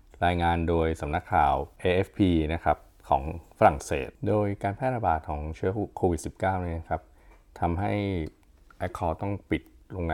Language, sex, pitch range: Thai, male, 80-95 Hz